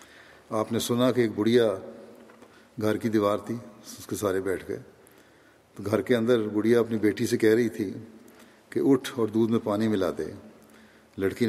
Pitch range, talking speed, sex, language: 105-120 Hz, 185 wpm, male, Urdu